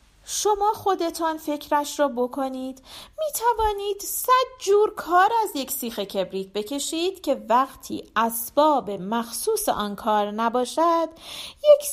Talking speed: 110 wpm